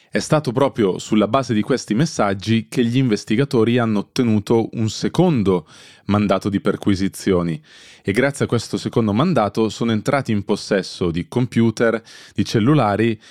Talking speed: 145 wpm